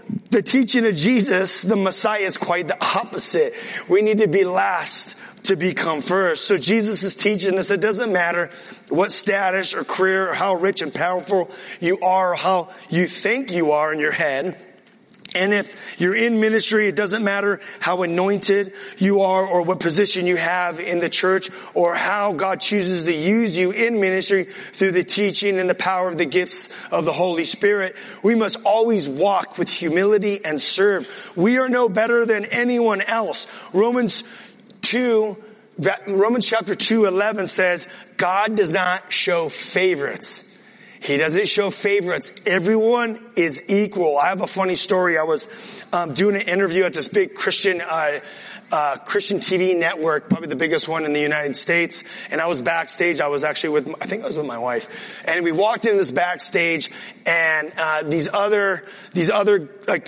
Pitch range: 175-210 Hz